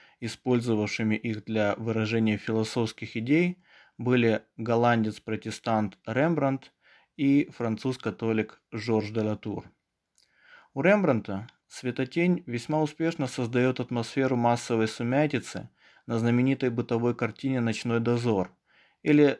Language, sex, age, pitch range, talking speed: Russian, male, 20-39, 110-125 Hz, 95 wpm